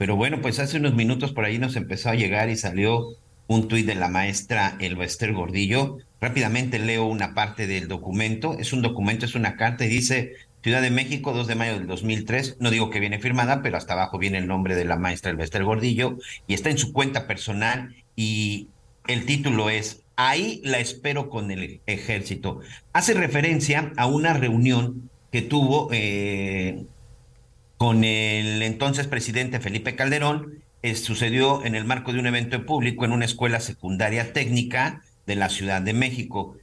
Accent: Mexican